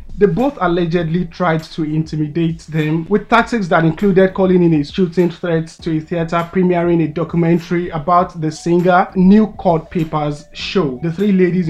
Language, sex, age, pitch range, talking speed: English, male, 20-39, 155-180 Hz, 165 wpm